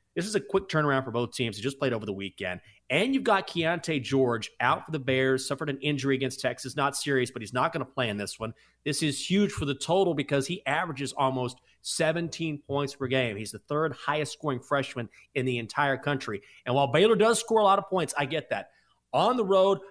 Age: 30-49